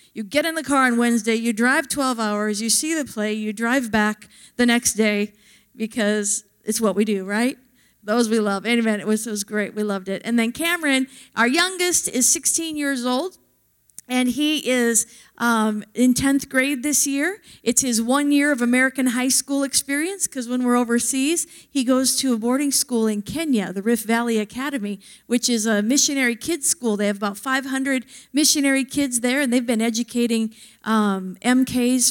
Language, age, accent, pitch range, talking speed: English, 50-69, American, 215-265 Hz, 185 wpm